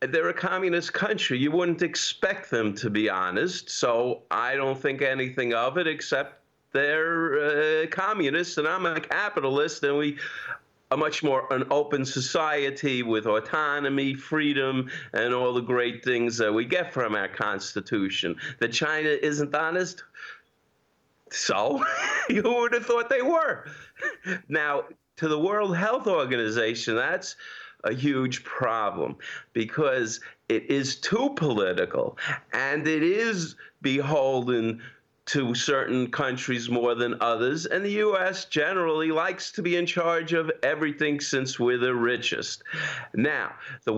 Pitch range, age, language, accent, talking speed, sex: 125-165 Hz, 50-69, English, American, 140 wpm, male